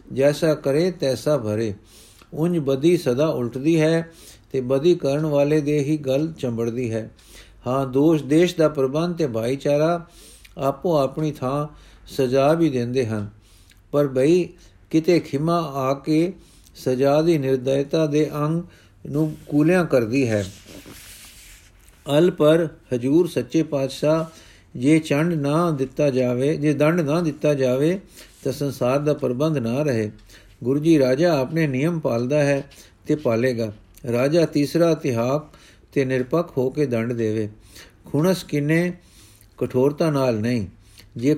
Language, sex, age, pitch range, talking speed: Punjabi, male, 50-69, 125-155 Hz, 125 wpm